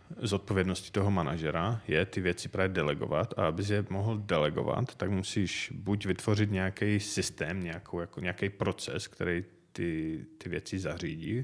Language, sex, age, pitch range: Czech, male, 30-49, 85-100 Hz